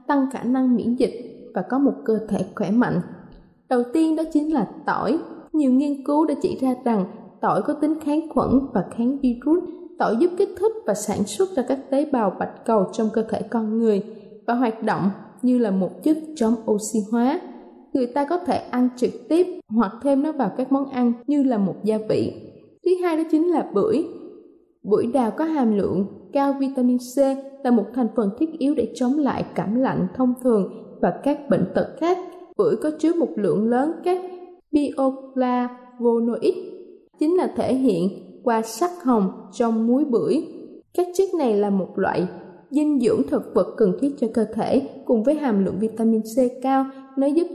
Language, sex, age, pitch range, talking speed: Vietnamese, female, 20-39, 225-300 Hz, 195 wpm